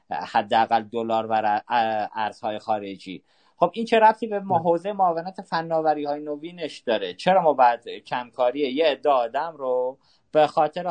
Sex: male